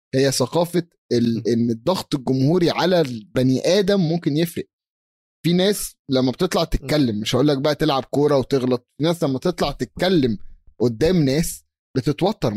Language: Arabic